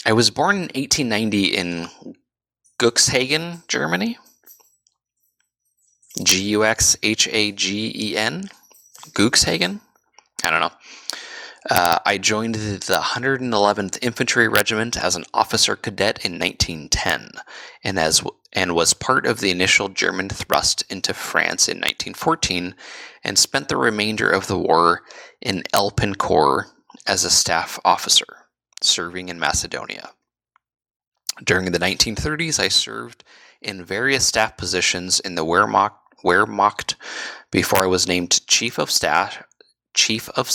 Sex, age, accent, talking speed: male, 20-39, American, 115 wpm